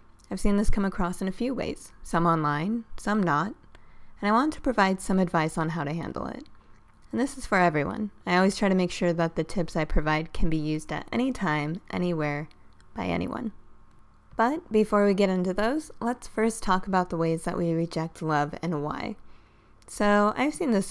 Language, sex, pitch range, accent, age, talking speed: English, female, 155-200 Hz, American, 20-39, 205 wpm